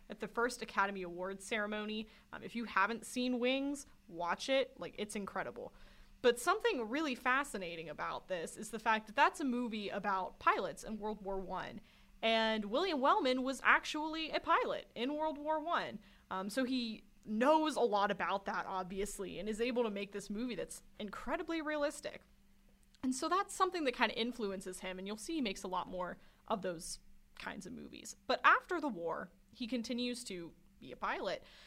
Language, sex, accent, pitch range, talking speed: English, female, American, 205-290 Hz, 185 wpm